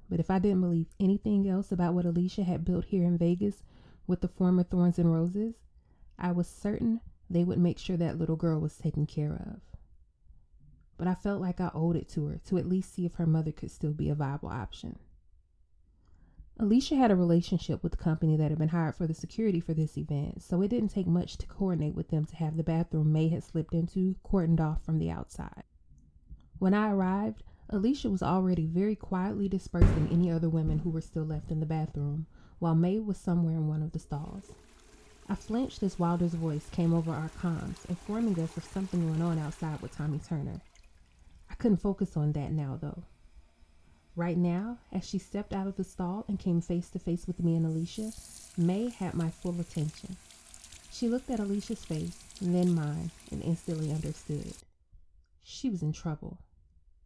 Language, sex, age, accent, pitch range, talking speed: English, female, 20-39, American, 155-185 Hz, 195 wpm